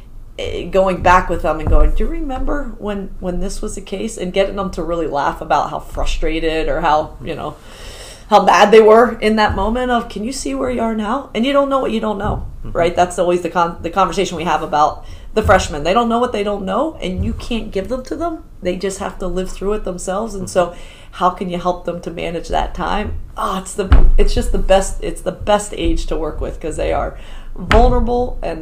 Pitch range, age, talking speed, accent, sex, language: 175-220 Hz, 30-49, 240 wpm, American, female, English